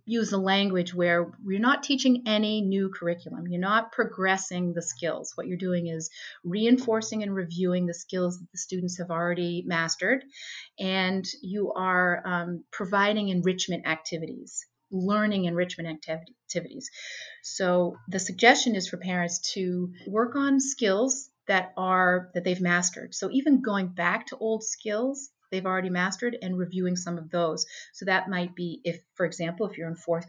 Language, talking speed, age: English, 160 wpm, 30-49